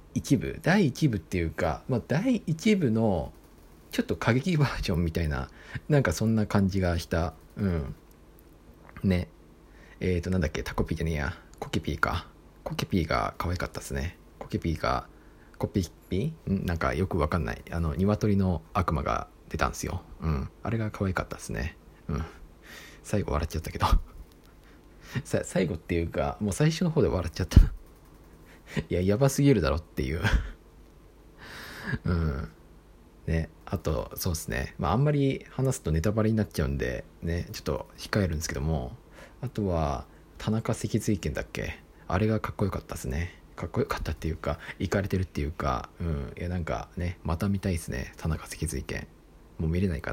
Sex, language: male, Japanese